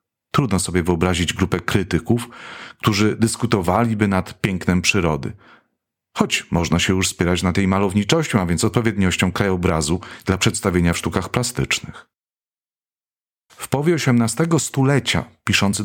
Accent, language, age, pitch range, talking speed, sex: native, Polish, 40-59, 95-125 Hz, 120 wpm, male